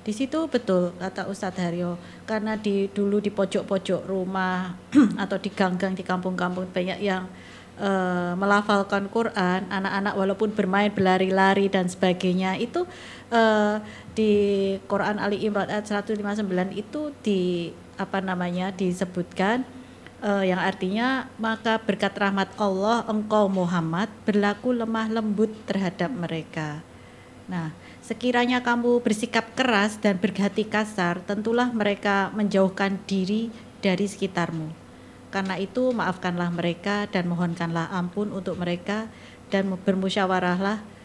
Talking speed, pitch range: 115 wpm, 185-215 Hz